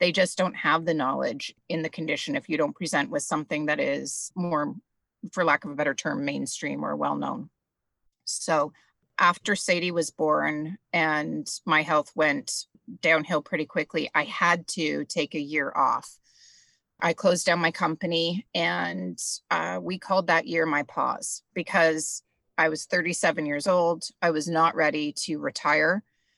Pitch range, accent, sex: 155-185 Hz, American, female